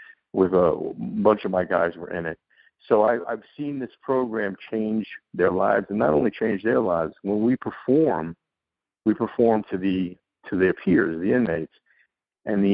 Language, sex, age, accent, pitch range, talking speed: English, male, 50-69, American, 95-115 Hz, 185 wpm